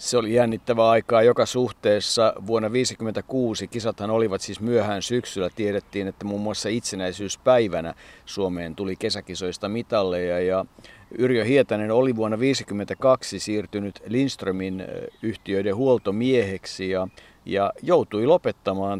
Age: 50-69